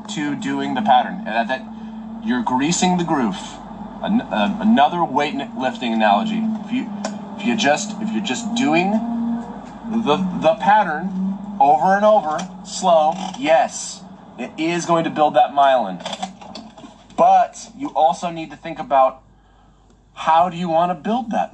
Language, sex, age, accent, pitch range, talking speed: Indonesian, male, 30-49, American, 155-220 Hz, 135 wpm